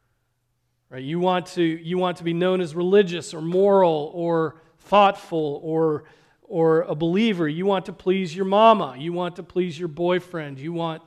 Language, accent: English, American